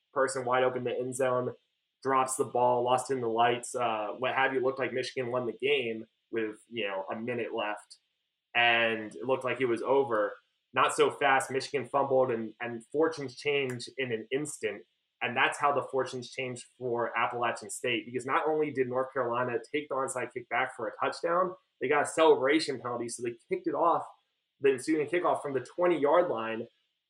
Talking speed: 200 wpm